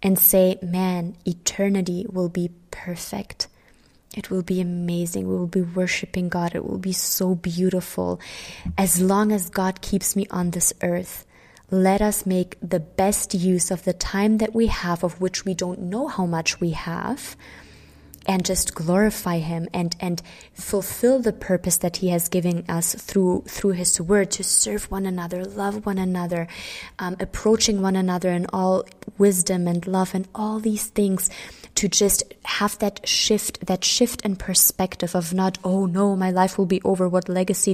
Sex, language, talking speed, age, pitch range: female, English, 175 wpm, 20-39, 175-205 Hz